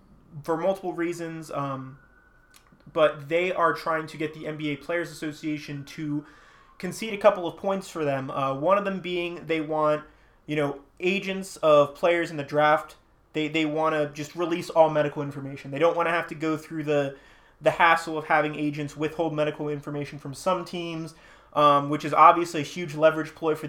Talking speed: 190 wpm